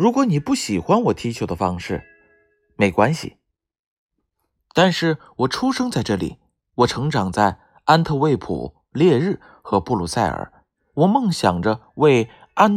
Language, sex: Chinese, male